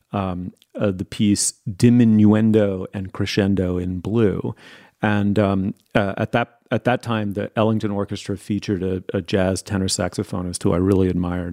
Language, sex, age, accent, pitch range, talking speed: English, male, 30-49, American, 95-110 Hz, 155 wpm